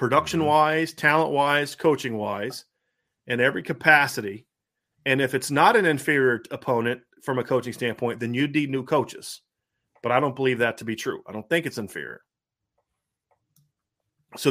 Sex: male